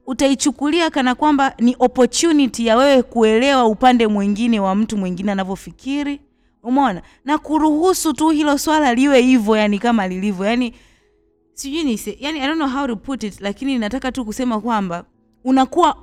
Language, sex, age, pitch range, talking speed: Swahili, female, 30-49, 205-280 Hz, 155 wpm